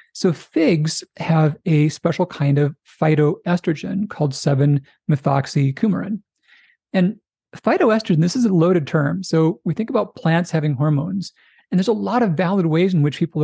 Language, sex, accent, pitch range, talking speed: English, male, American, 150-195 Hz, 150 wpm